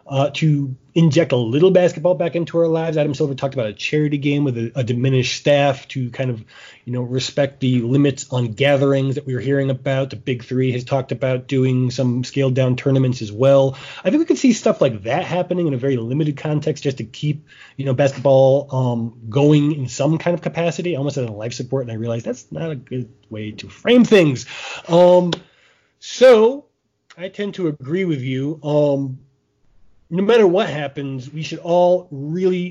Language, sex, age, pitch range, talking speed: English, male, 30-49, 130-160 Hz, 200 wpm